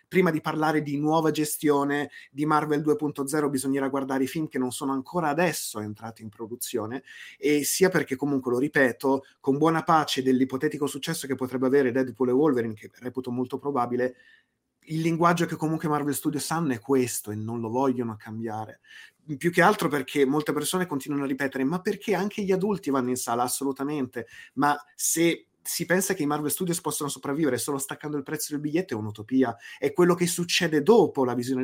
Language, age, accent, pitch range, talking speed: Italian, 30-49, native, 130-155 Hz, 190 wpm